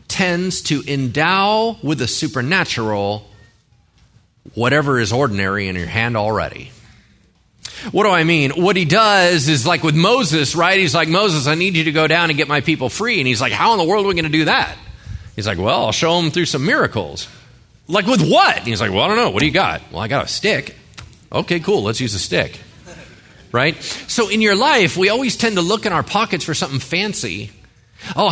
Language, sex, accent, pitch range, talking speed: English, male, American, 130-210 Hz, 215 wpm